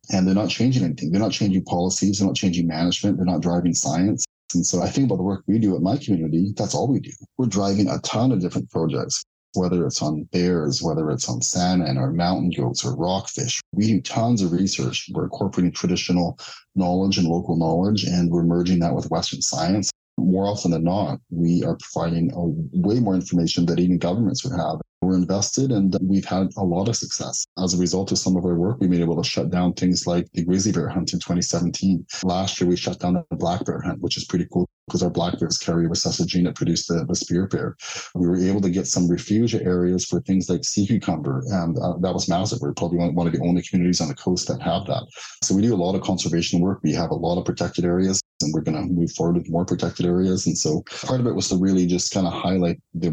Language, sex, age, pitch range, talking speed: English, male, 30-49, 85-95 Hz, 240 wpm